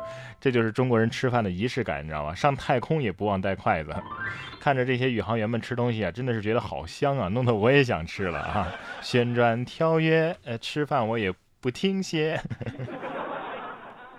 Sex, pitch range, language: male, 105-165 Hz, Chinese